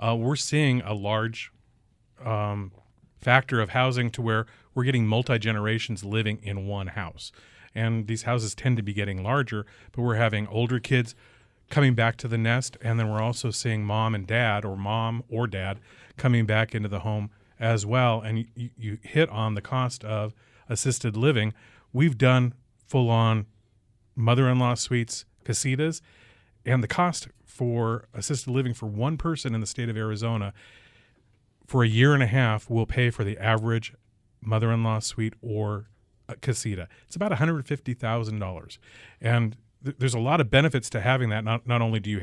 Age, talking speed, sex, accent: 40-59, 170 wpm, male, American